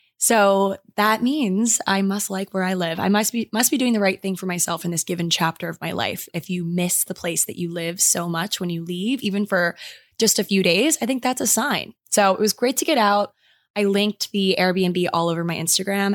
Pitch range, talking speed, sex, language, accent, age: 180-220 Hz, 245 wpm, female, English, American, 20-39